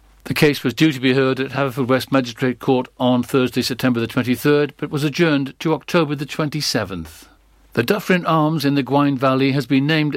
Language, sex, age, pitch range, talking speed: English, male, 60-79, 125-150 Hz, 215 wpm